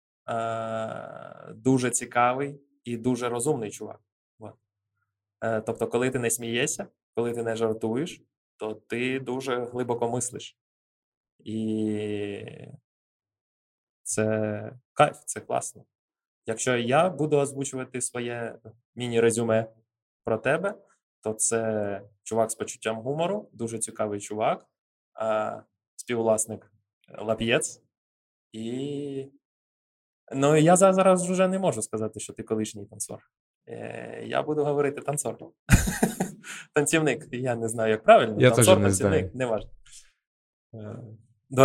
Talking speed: 105 wpm